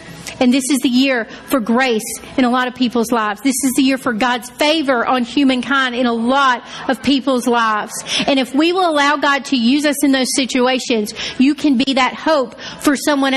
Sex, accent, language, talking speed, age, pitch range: female, American, English, 210 wpm, 40-59, 245-290 Hz